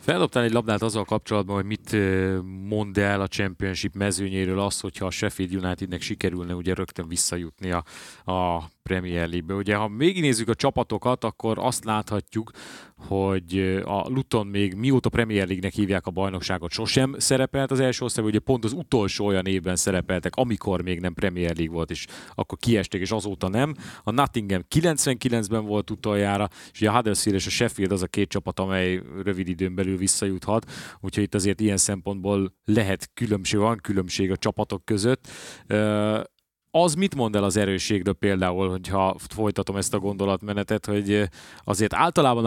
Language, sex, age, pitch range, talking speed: Hungarian, male, 30-49, 95-110 Hz, 165 wpm